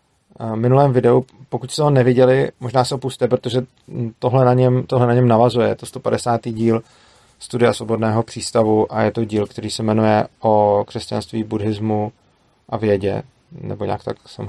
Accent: native